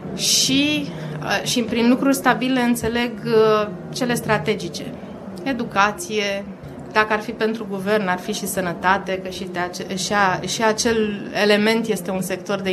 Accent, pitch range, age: native, 195-270 Hz, 20-39